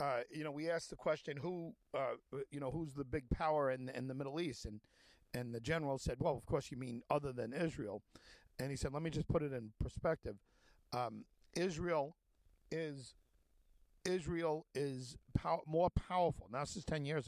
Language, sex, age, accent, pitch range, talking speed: English, male, 50-69, American, 125-165 Hz, 195 wpm